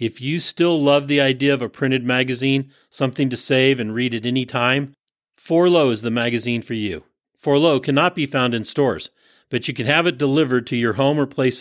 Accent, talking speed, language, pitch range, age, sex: American, 210 wpm, English, 125-160 Hz, 40-59, male